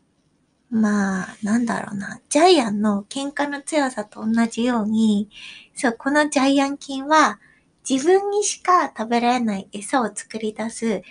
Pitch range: 215-295 Hz